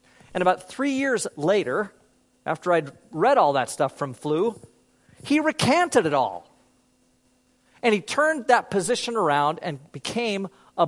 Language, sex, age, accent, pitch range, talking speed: English, male, 40-59, American, 170-255 Hz, 145 wpm